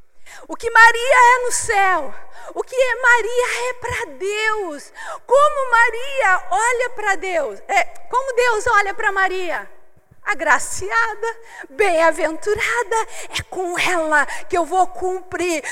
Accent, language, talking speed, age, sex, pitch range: Brazilian, Portuguese, 125 wpm, 40-59, female, 330-445 Hz